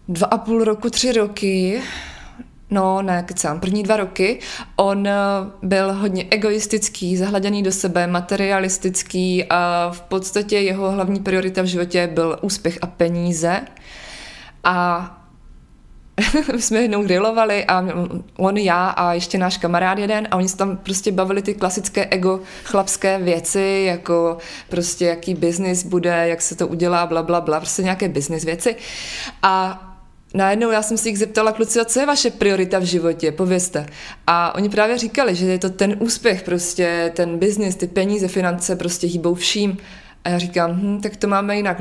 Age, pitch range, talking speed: 20-39, 175-215 Hz, 160 wpm